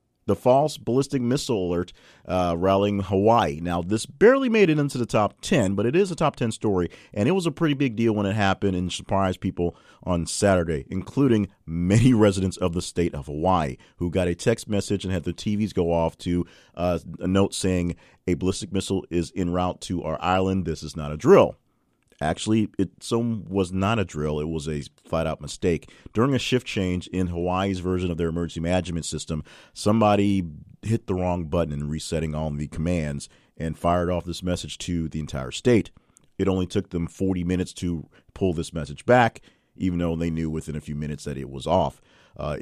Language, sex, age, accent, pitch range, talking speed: English, male, 40-59, American, 80-95 Hz, 200 wpm